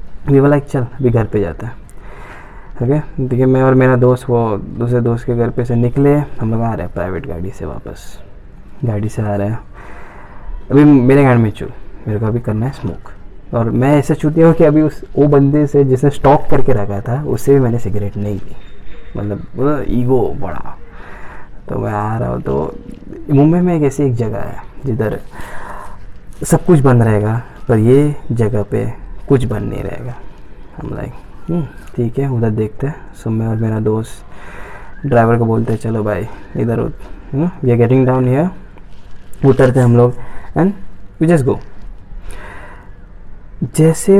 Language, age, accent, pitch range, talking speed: Hindi, 20-39, native, 100-135 Hz, 180 wpm